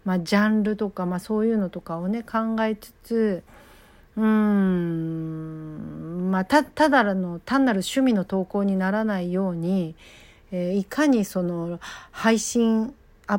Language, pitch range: Japanese, 190-235 Hz